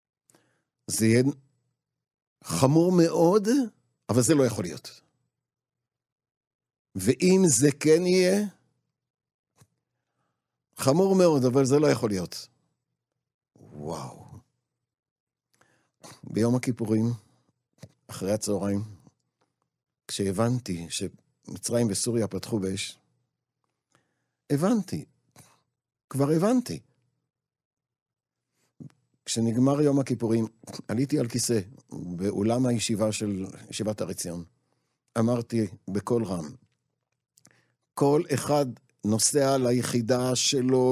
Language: Hebrew